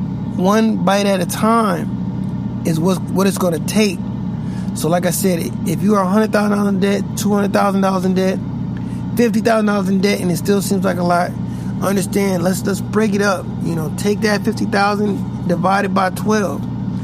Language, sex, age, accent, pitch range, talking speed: English, male, 20-39, American, 170-205 Hz, 175 wpm